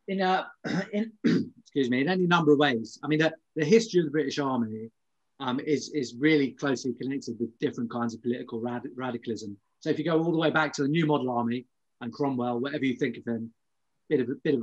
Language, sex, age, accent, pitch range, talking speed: English, male, 30-49, British, 125-150 Hz, 235 wpm